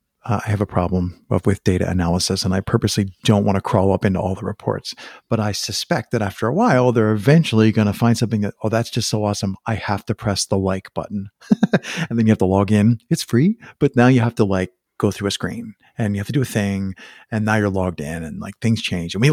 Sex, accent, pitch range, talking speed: male, American, 95-120 Hz, 255 wpm